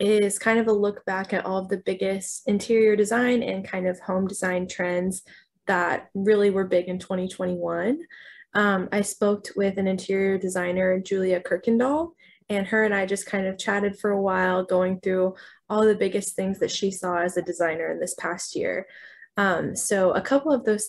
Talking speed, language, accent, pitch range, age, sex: 190 wpm, English, American, 185-210 Hz, 20-39, female